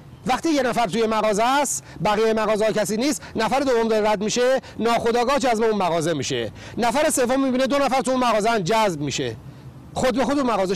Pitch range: 160-235 Hz